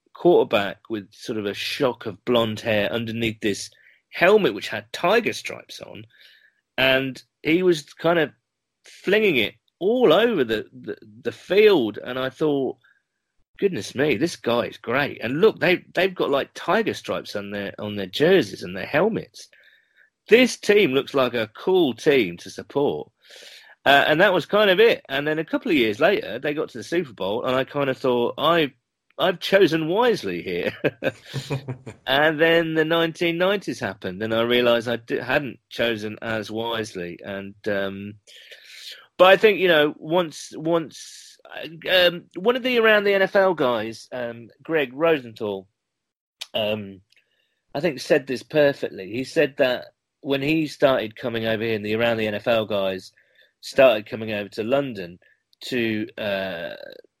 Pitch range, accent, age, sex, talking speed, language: 110-165 Hz, British, 40-59, male, 165 wpm, English